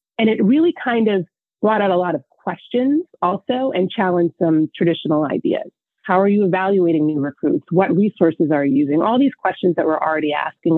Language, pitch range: English, 160-205 Hz